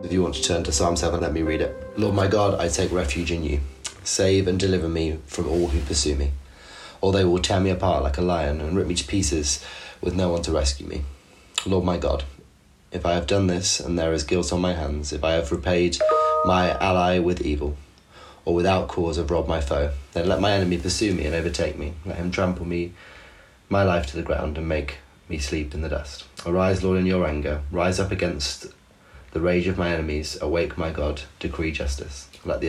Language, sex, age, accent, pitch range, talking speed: English, male, 30-49, British, 75-90 Hz, 230 wpm